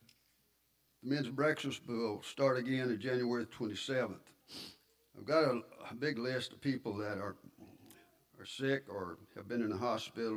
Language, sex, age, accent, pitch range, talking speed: English, male, 60-79, American, 110-130 Hz, 155 wpm